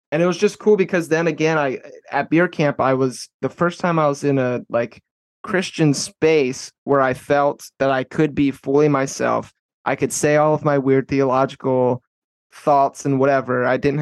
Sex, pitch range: male, 120-145 Hz